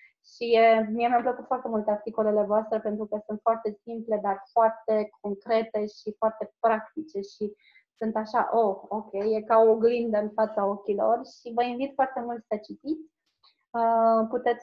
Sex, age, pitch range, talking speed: female, 20-39, 210-235 Hz, 160 wpm